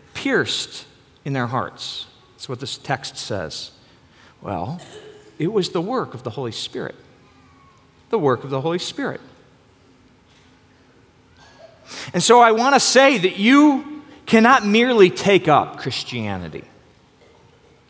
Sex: male